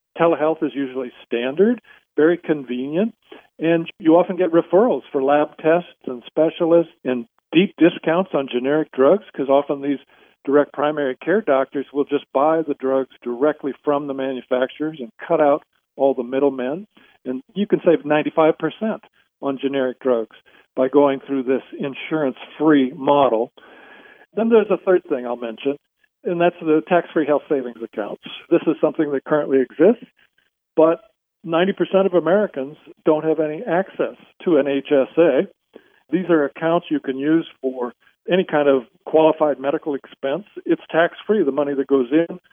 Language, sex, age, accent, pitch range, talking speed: English, male, 50-69, American, 135-165 Hz, 155 wpm